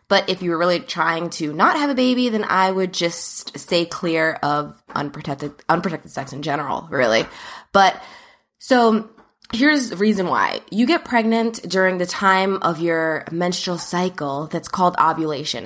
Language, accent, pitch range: English, American, 155-195 Hz